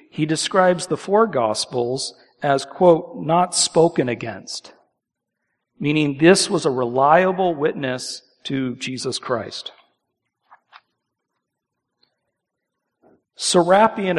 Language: English